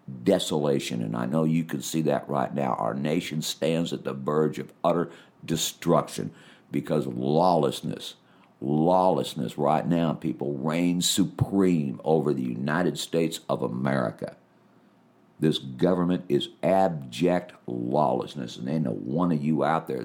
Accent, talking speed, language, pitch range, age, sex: American, 140 wpm, English, 70-85 Hz, 60-79, male